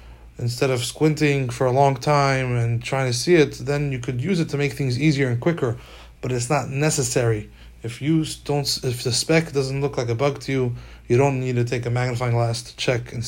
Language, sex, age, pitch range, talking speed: English, male, 20-39, 120-140 Hz, 230 wpm